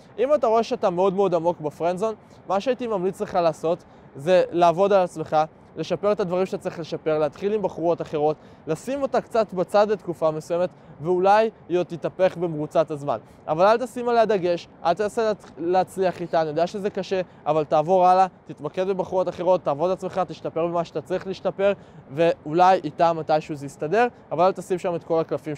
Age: 20-39